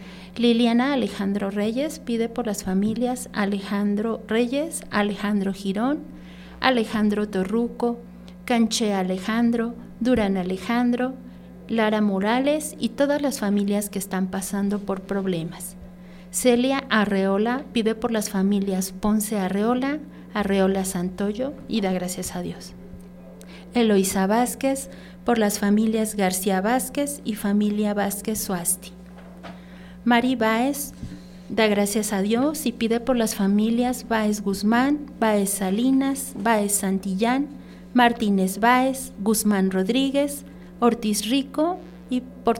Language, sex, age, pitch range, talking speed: Spanish, female, 40-59, 190-235 Hz, 110 wpm